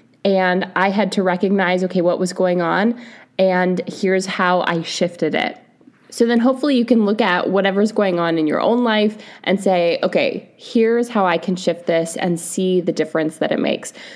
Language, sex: English, female